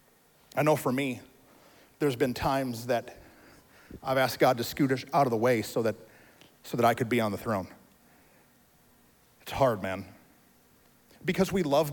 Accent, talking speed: American, 165 wpm